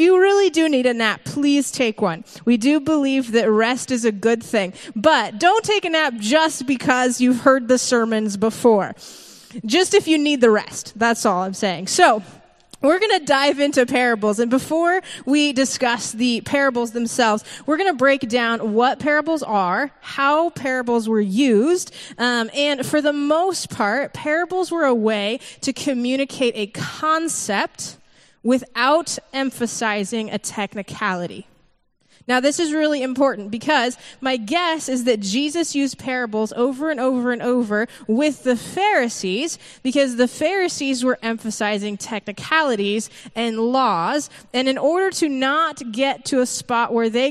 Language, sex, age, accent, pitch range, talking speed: English, female, 20-39, American, 225-285 Hz, 155 wpm